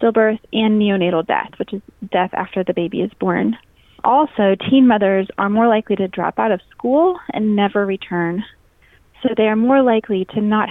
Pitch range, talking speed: 195-245 Hz, 185 wpm